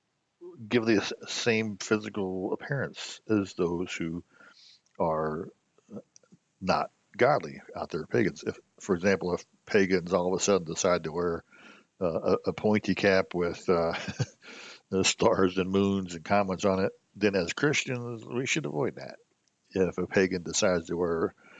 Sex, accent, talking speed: male, American, 150 wpm